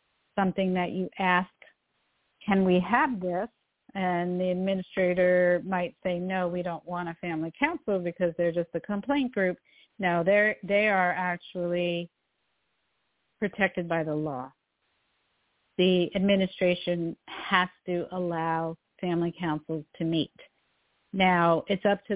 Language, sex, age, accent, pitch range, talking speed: English, female, 50-69, American, 170-195 Hz, 130 wpm